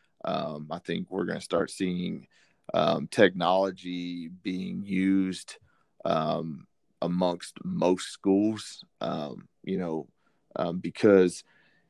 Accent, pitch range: American, 85-95 Hz